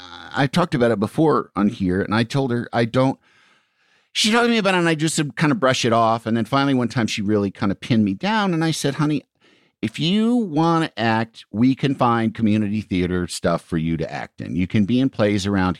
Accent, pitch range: American, 100-140 Hz